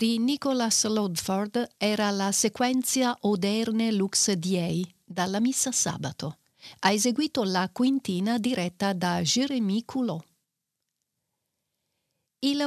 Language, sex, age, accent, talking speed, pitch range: Italian, female, 50-69, native, 100 wpm, 180-235 Hz